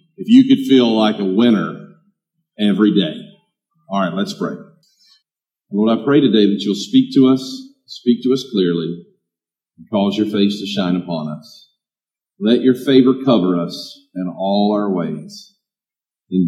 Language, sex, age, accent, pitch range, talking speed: English, male, 50-69, American, 130-195 Hz, 160 wpm